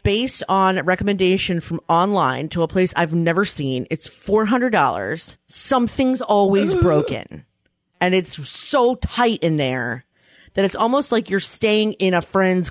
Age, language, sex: 30-49, English, female